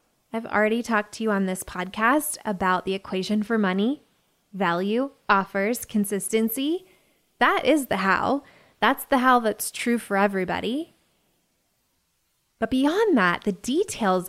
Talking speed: 135 wpm